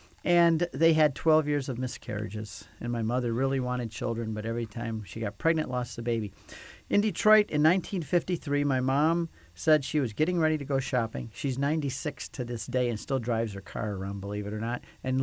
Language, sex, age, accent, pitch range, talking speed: English, male, 40-59, American, 115-135 Hz, 205 wpm